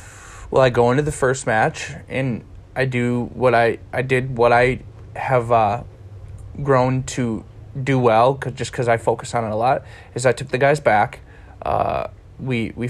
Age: 20-39